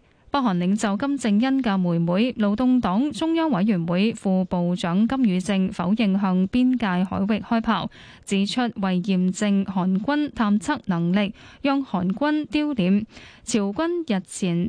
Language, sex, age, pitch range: Chinese, female, 10-29, 185-240 Hz